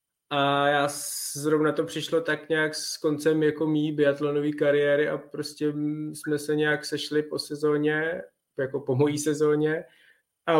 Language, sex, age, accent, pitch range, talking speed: Czech, male, 20-39, native, 140-155 Hz, 145 wpm